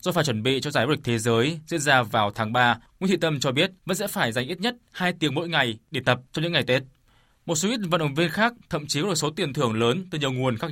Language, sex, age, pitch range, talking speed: Vietnamese, male, 20-39, 125-170 Hz, 310 wpm